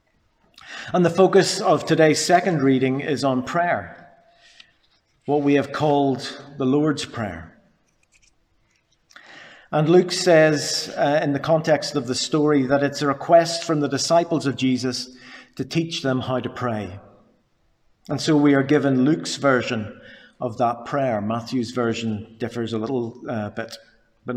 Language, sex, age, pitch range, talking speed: English, male, 50-69, 125-150 Hz, 150 wpm